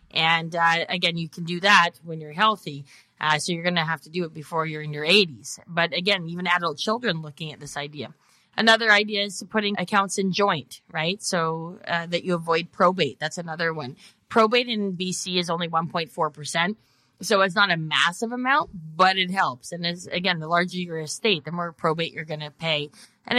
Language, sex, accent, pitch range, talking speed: English, female, American, 165-200 Hz, 205 wpm